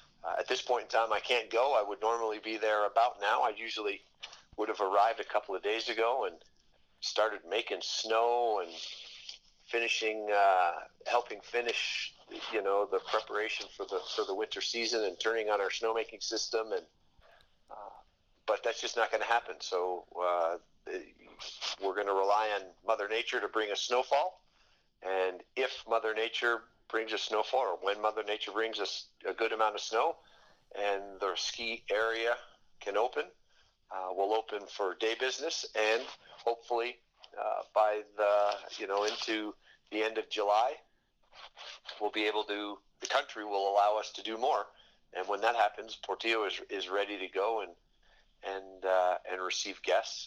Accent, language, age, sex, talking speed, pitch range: American, English, 50-69, male, 170 wpm, 100-115 Hz